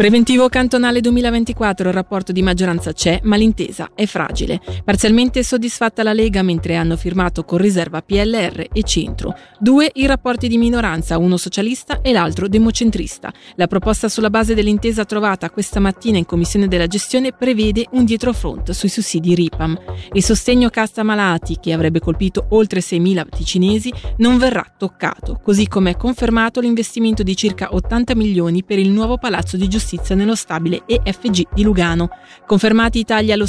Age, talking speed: 30-49, 160 wpm